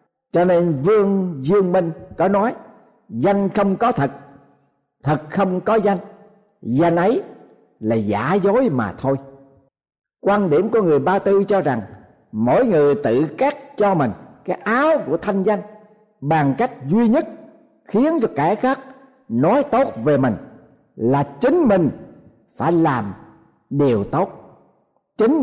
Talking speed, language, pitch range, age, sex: 145 wpm, Vietnamese, 140-205 Hz, 50-69, male